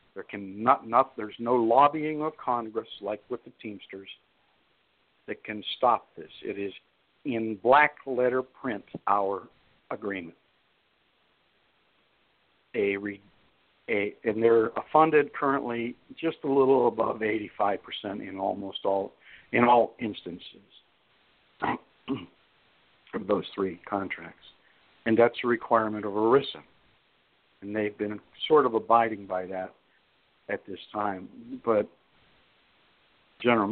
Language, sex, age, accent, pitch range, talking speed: English, male, 60-79, American, 105-130 Hz, 120 wpm